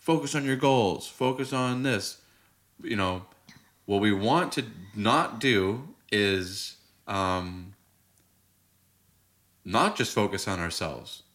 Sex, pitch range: male, 95-115 Hz